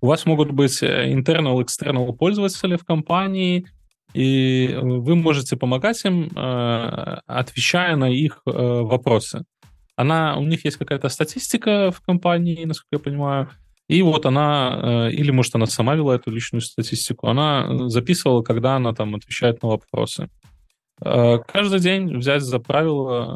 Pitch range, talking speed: 115-155 Hz, 135 wpm